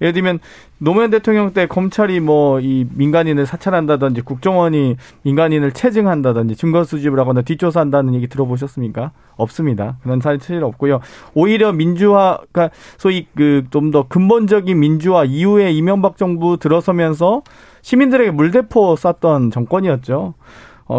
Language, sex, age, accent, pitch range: Korean, male, 40-59, native, 140-180 Hz